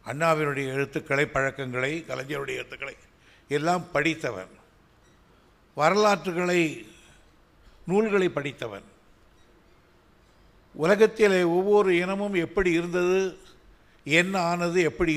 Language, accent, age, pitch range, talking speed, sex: Tamil, native, 60-79, 130-170 Hz, 70 wpm, male